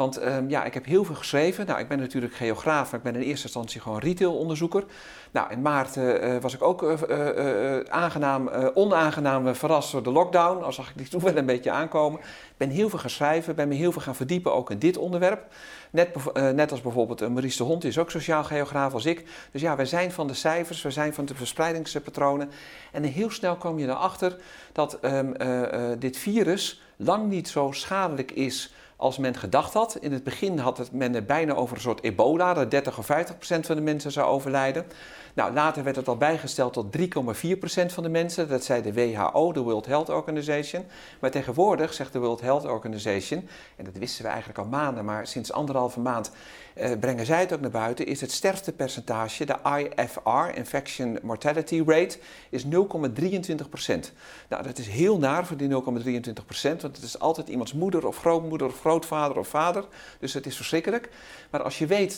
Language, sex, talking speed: Dutch, male, 205 wpm